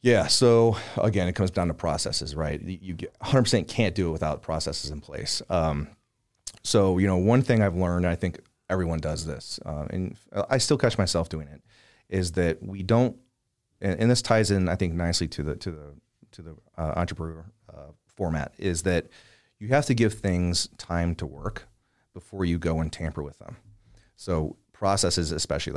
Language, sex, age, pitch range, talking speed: English, male, 30-49, 85-105 Hz, 190 wpm